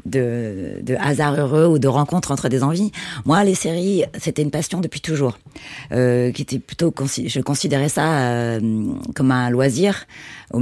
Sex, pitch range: female, 130-160 Hz